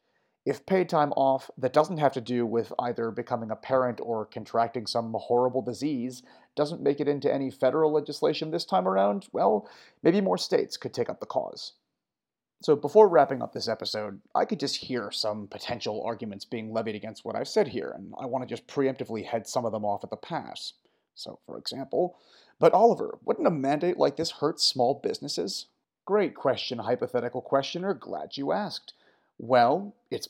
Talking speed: 185 wpm